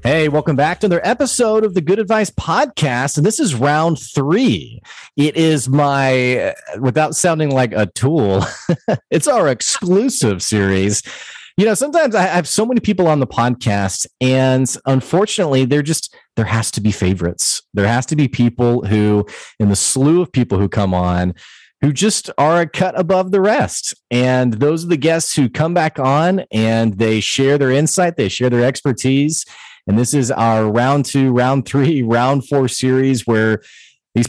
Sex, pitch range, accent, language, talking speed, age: male, 115-160 Hz, American, English, 175 wpm, 30-49